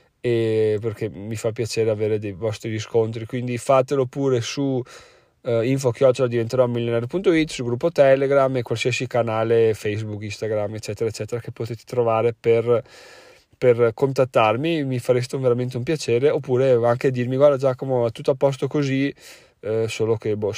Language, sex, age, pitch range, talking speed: Italian, male, 20-39, 110-130 Hz, 150 wpm